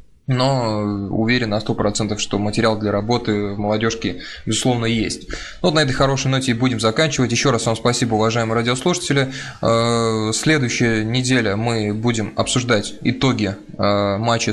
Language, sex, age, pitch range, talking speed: Russian, male, 20-39, 110-130 Hz, 140 wpm